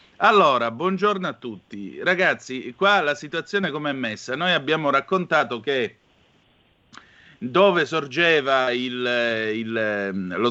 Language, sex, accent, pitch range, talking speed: Italian, male, native, 120-155 Hz, 110 wpm